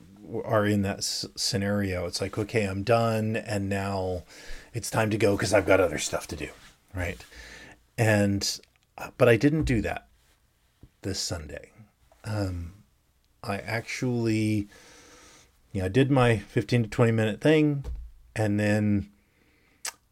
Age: 40-59